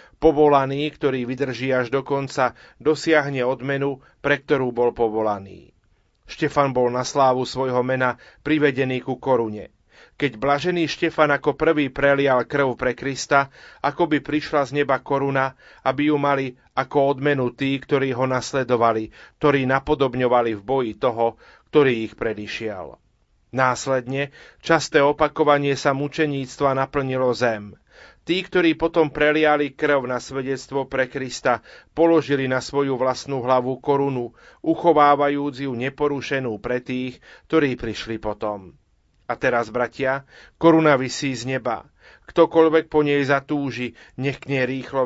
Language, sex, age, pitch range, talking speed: Slovak, male, 30-49, 125-145 Hz, 130 wpm